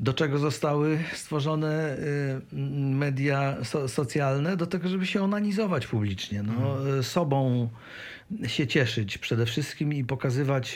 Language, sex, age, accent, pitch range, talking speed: Polish, male, 50-69, native, 120-145 Hz, 110 wpm